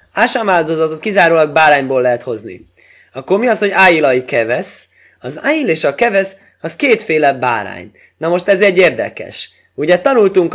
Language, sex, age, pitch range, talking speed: Hungarian, male, 20-39, 120-165 Hz, 150 wpm